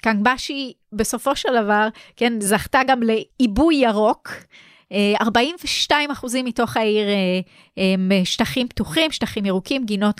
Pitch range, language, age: 195-255 Hz, Hebrew, 30-49